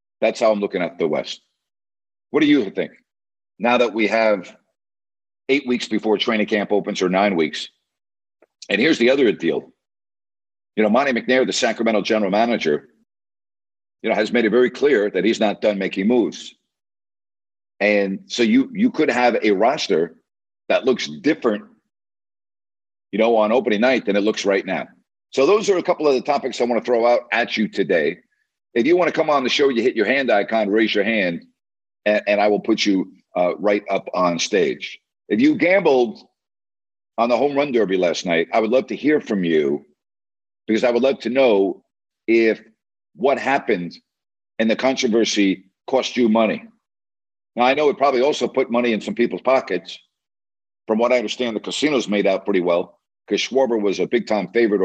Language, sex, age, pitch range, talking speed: English, male, 50-69, 100-120 Hz, 190 wpm